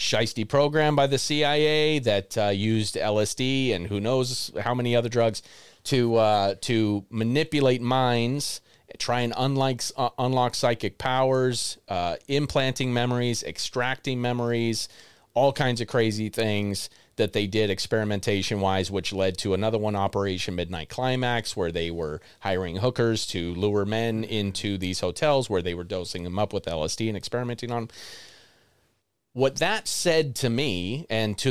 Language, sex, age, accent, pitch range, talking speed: English, male, 30-49, American, 100-125 Hz, 150 wpm